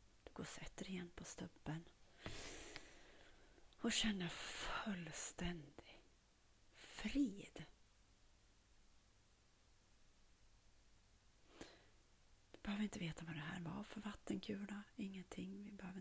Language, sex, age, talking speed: Swedish, female, 30-49, 80 wpm